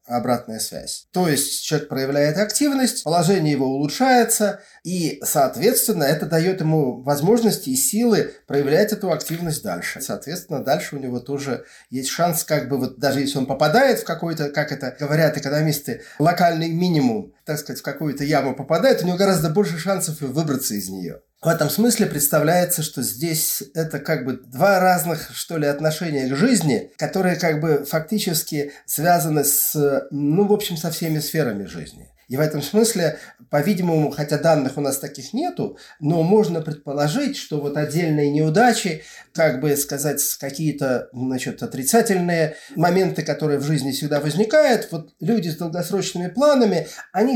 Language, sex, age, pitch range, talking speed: Russian, male, 30-49, 145-180 Hz, 155 wpm